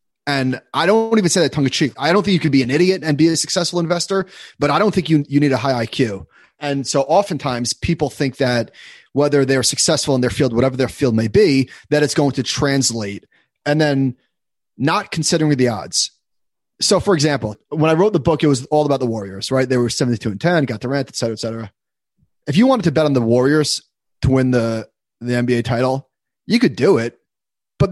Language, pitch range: English, 130-165 Hz